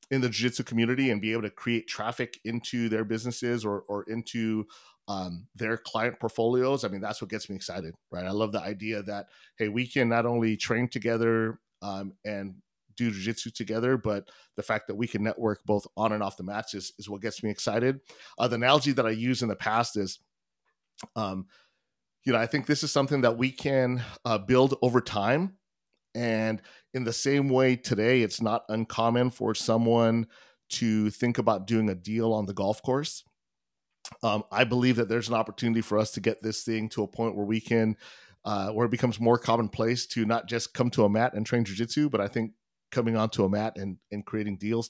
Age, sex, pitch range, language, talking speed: 40-59, male, 105-120 Hz, English, 210 wpm